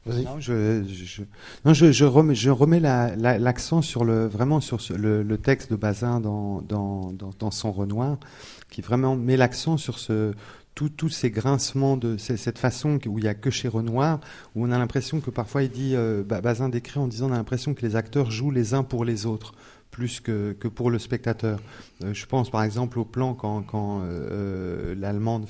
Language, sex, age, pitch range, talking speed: French, male, 40-59, 105-130 Hz, 210 wpm